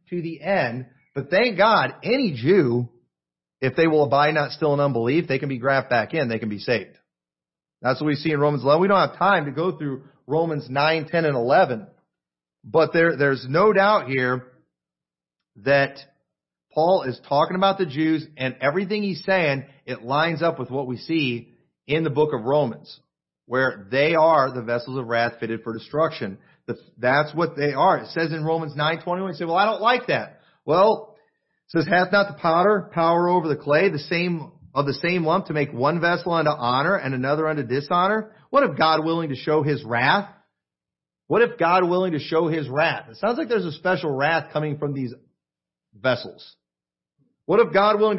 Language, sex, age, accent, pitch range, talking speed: English, male, 40-59, American, 135-175 Hz, 195 wpm